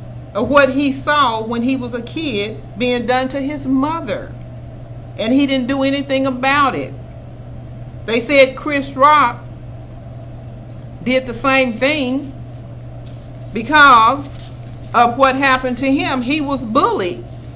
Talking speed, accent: 125 wpm, American